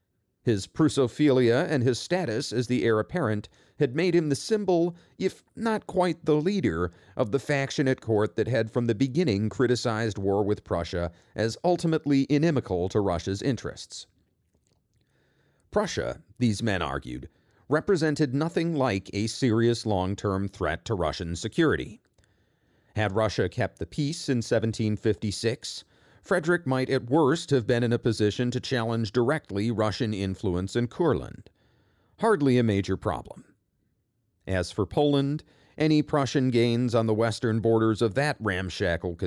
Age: 40-59